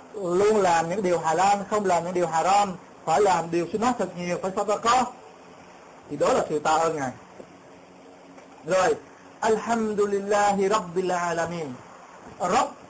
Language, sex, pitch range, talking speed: Vietnamese, male, 145-215 Hz, 155 wpm